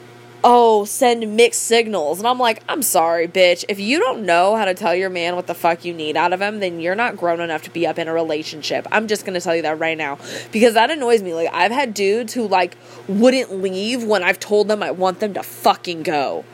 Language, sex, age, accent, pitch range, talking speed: English, female, 20-39, American, 180-240 Hz, 250 wpm